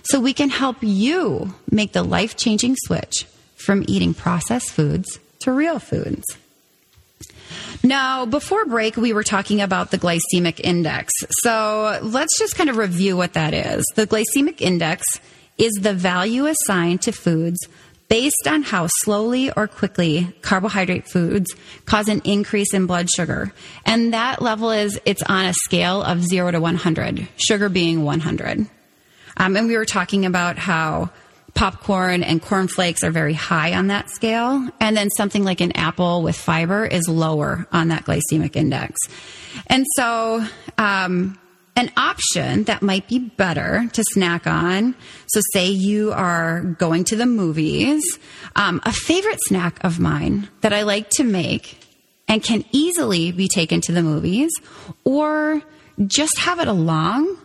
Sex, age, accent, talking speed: female, 30-49, American, 155 wpm